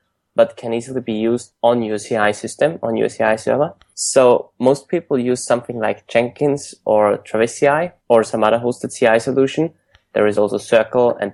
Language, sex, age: English, male, 20-39